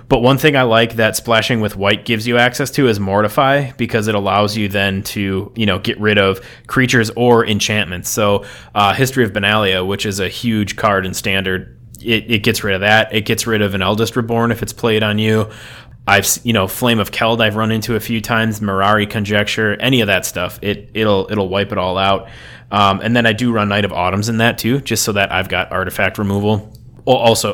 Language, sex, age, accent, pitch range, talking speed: English, male, 20-39, American, 100-120 Hz, 225 wpm